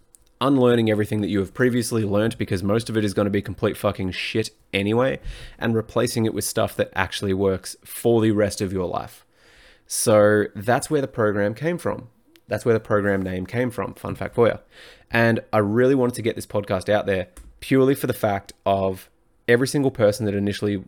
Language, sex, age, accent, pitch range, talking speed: English, male, 20-39, Australian, 100-120 Hz, 205 wpm